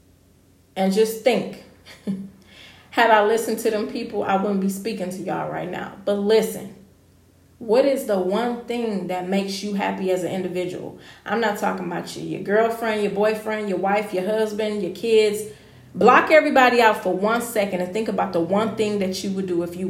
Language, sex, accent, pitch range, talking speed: English, female, American, 130-215 Hz, 195 wpm